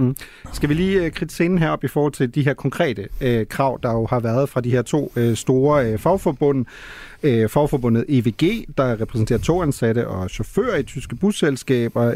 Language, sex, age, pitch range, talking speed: Danish, male, 30-49, 120-160 Hz, 190 wpm